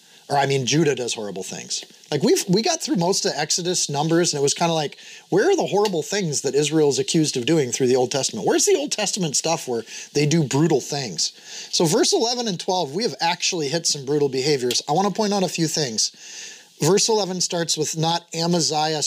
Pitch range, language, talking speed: 140-175 Hz, English, 225 wpm